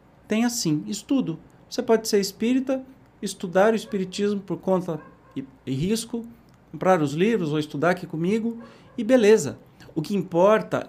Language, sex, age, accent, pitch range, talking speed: Portuguese, male, 50-69, Brazilian, 155-215 Hz, 145 wpm